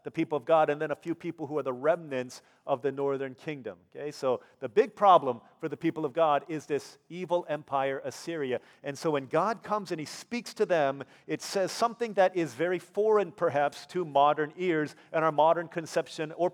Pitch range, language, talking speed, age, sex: 155-200 Hz, English, 210 wpm, 40-59, male